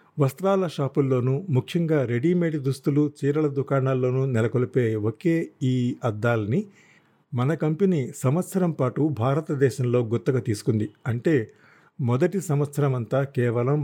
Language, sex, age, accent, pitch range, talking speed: Telugu, male, 50-69, native, 125-160 Hz, 100 wpm